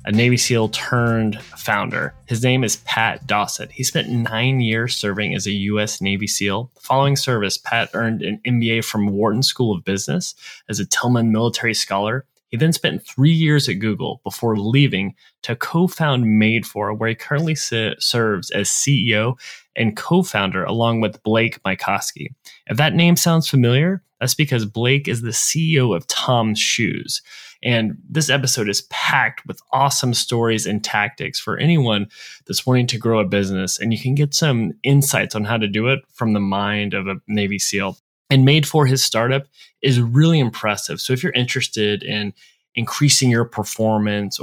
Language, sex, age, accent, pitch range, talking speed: English, male, 20-39, American, 105-135 Hz, 170 wpm